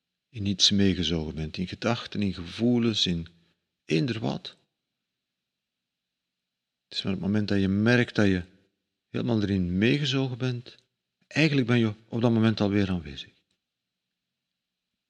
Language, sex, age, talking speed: Dutch, male, 50-69, 130 wpm